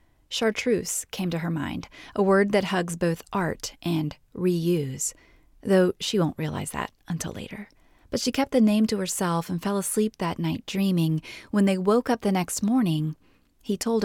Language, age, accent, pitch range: English, 30-49, American, 170-210 Hz